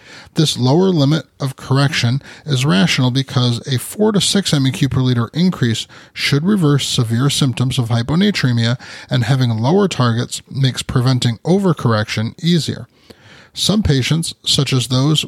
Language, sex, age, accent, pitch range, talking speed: English, male, 30-49, American, 125-160 Hz, 140 wpm